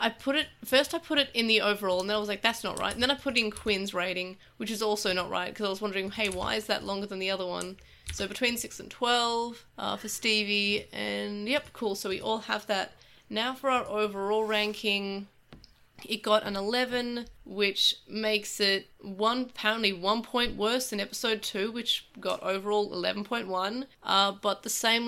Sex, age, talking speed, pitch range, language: female, 20-39, 210 wpm, 195-225 Hz, English